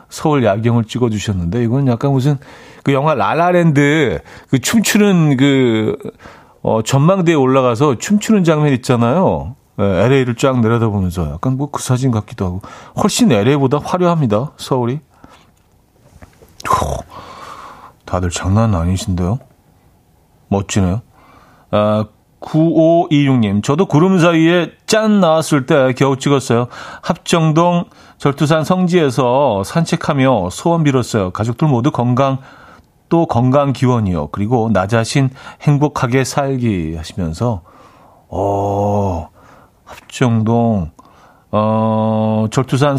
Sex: male